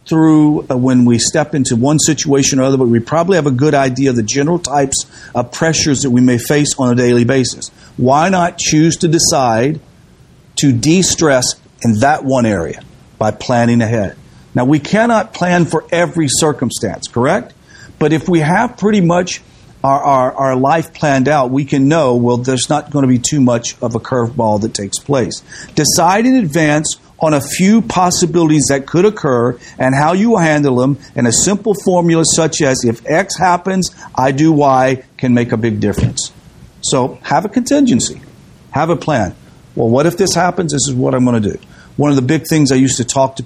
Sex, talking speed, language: male, 195 wpm, English